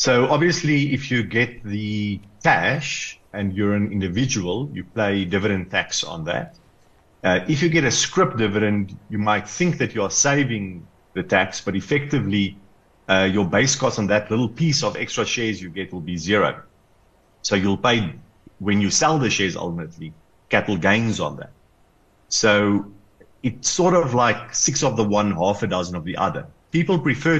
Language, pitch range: English, 95-130 Hz